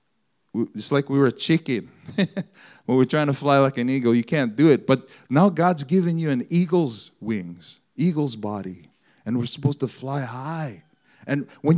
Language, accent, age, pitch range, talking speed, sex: English, American, 40-59, 115-160 Hz, 185 wpm, male